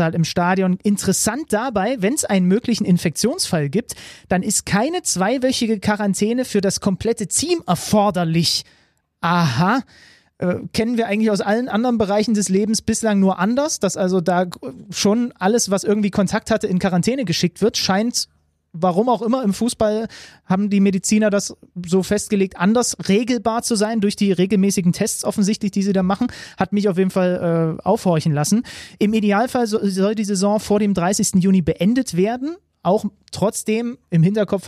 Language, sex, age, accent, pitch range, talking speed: German, male, 30-49, German, 175-210 Hz, 165 wpm